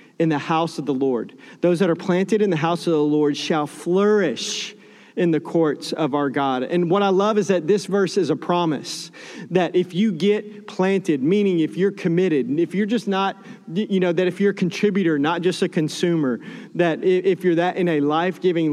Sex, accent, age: male, American, 40-59